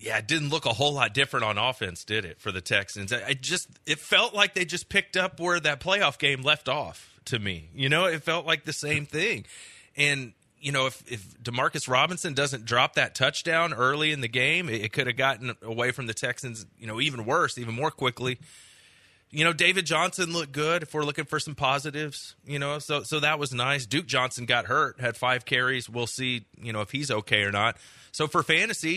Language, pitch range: English, 120-160 Hz